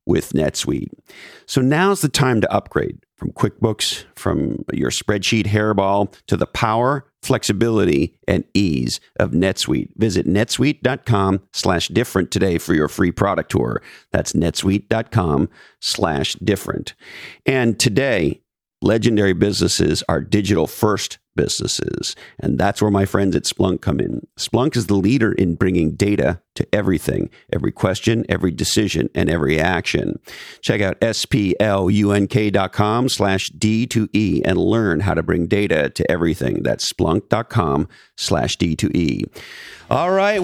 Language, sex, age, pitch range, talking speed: English, male, 50-69, 100-145 Hz, 125 wpm